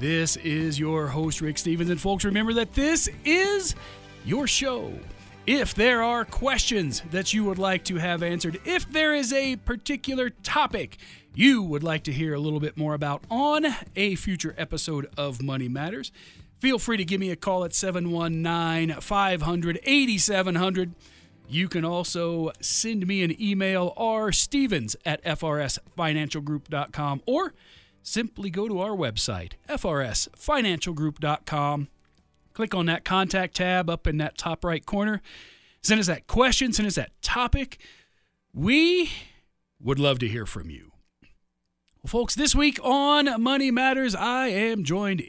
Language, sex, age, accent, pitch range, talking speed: English, male, 40-59, American, 155-220 Hz, 145 wpm